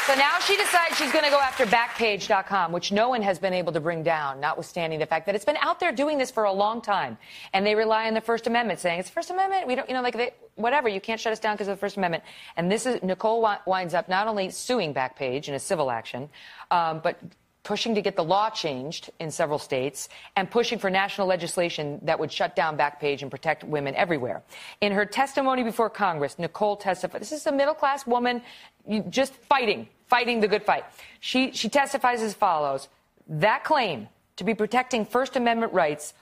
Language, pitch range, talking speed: English, 170-240 Hz, 215 wpm